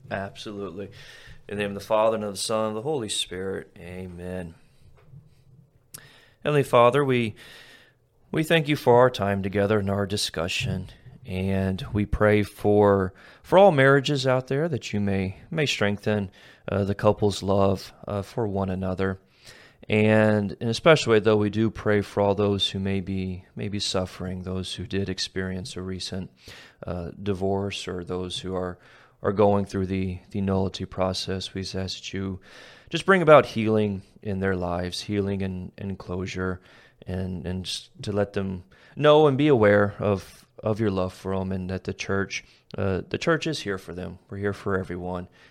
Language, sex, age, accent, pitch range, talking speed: English, male, 30-49, American, 95-115 Hz, 175 wpm